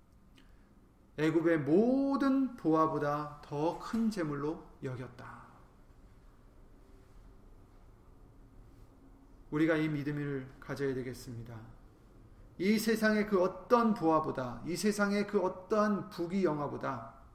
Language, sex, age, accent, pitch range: Korean, male, 30-49, native, 125-190 Hz